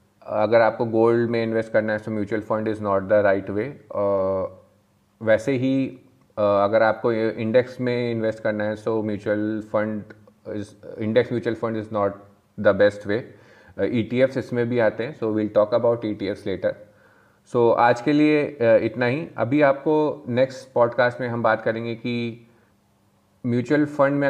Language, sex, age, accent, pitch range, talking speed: Hindi, male, 30-49, native, 105-120 Hz, 165 wpm